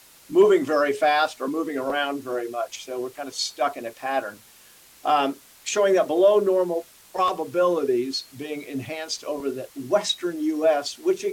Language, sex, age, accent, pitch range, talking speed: English, male, 50-69, American, 135-200 Hz, 155 wpm